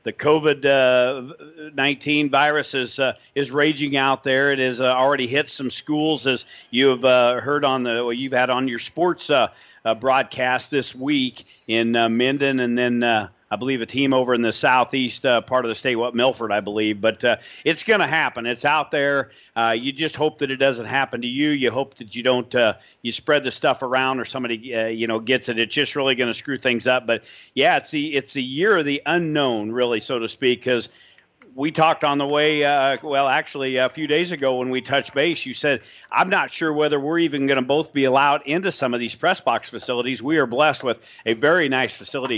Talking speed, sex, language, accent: 230 wpm, male, English, American